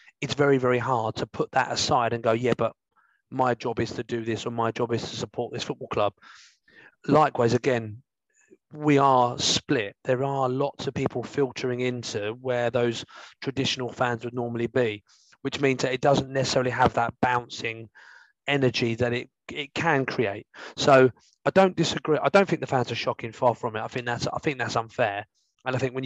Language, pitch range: English, 120-145 Hz